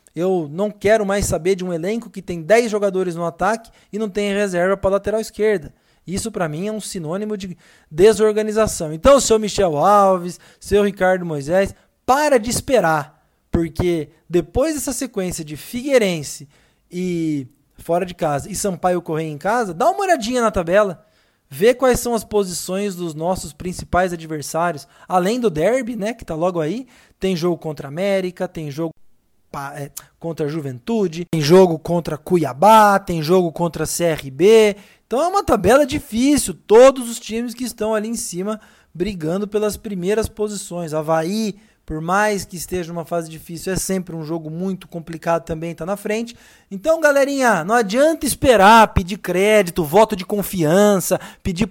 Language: Portuguese